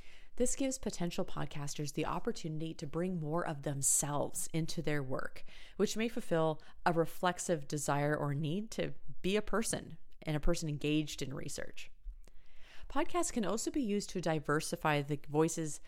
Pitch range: 150-185 Hz